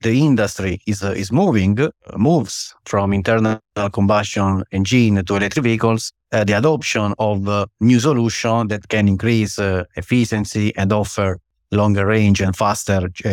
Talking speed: 155 wpm